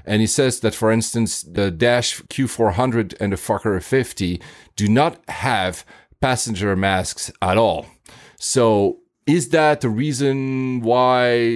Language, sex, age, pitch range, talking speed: English, male, 40-59, 95-125 Hz, 135 wpm